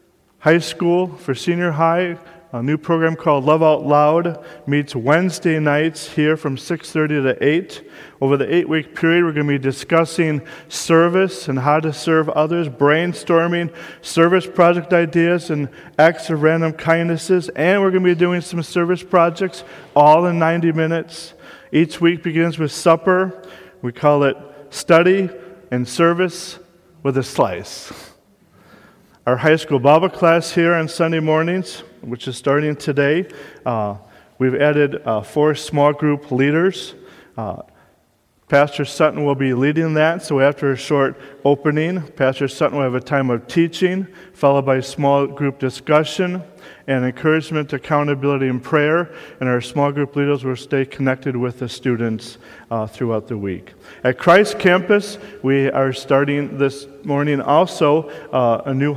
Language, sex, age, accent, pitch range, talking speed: English, male, 40-59, American, 135-170 Hz, 150 wpm